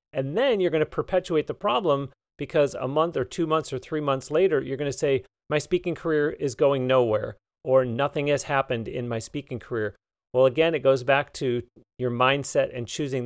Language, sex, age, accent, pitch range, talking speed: English, male, 40-59, American, 125-150 Hz, 210 wpm